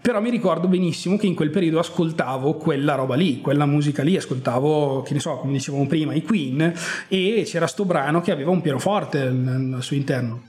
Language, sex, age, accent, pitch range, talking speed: Italian, male, 30-49, native, 135-160 Hz, 200 wpm